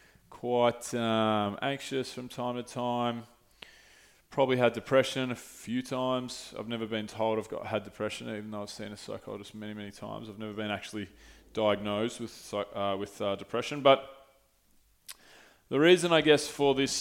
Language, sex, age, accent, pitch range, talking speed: English, male, 20-39, Australian, 105-130 Hz, 165 wpm